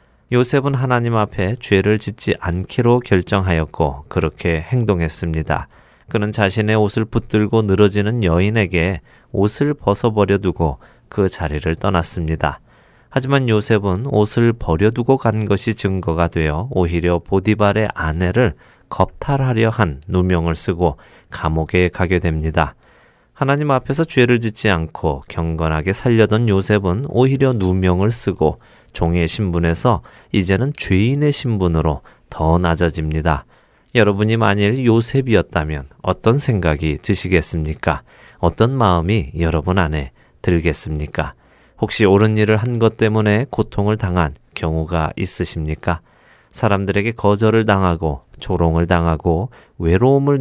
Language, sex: Korean, male